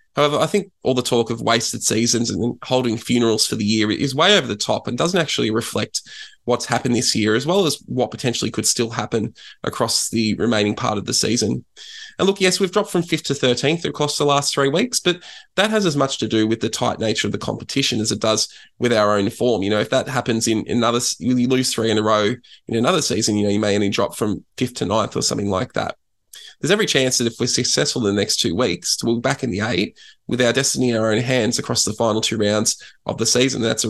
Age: 20-39